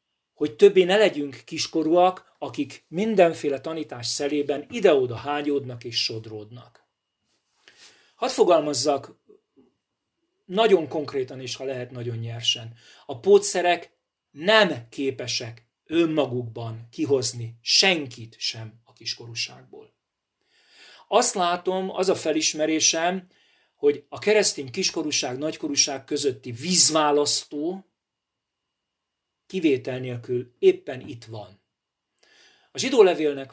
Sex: male